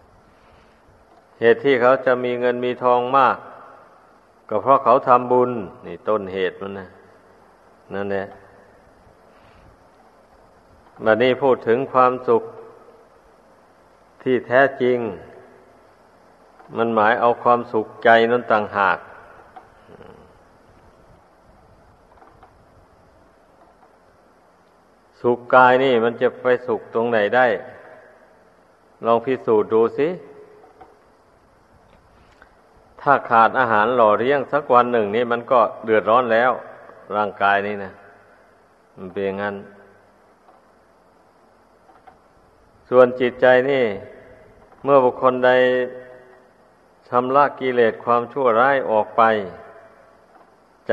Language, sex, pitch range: Thai, male, 105-125 Hz